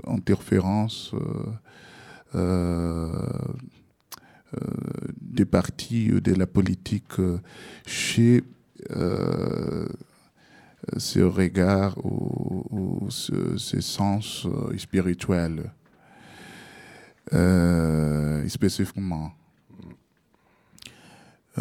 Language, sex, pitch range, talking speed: French, male, 85-100 Hz, 65 wpm